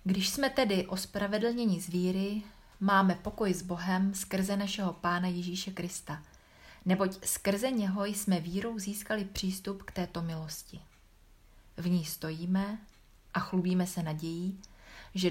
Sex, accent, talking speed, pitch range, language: female, native, 130 wpm, 165-195 Hz, Czech